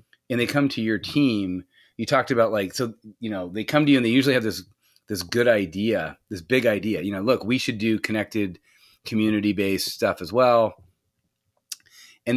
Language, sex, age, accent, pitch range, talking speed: English, male, 30-49, American, 95-120 Hz, 200 wpm